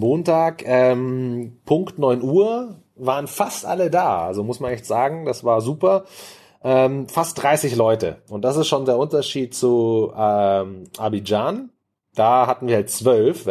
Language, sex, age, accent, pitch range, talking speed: German, male, 30-49, German, 115-155 Hz, 155 wpm